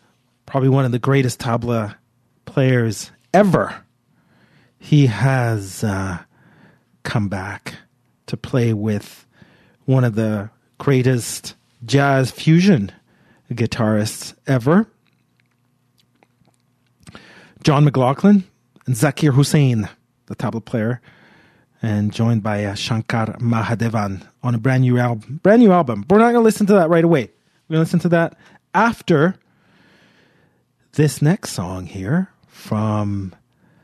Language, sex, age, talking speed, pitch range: English, male, 30-49, 115 wpm, 115-175 Hz